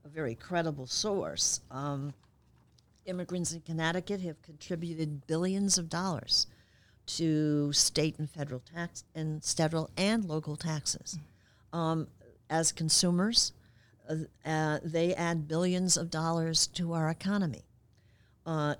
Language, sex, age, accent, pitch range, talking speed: English, female, 50-69, American, 135-170 Hz, 120 wpm